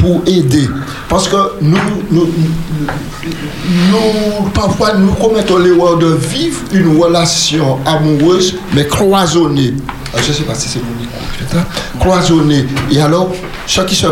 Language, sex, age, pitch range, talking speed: French, male, 60-79, 145-185 Hz, 140 wpm